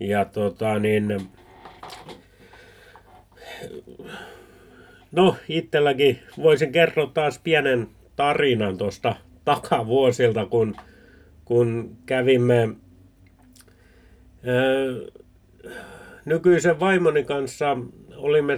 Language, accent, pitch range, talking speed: Finnish, native, 110-155 Hz, 60 wpm